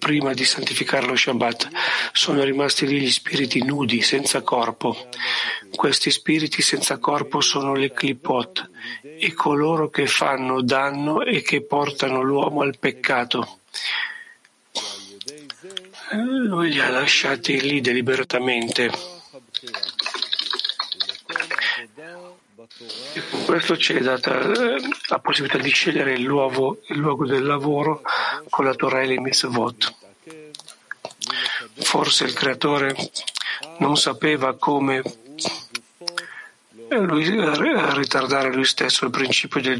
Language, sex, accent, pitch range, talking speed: Italian, male, native, 130-155 Hz, 105 wpm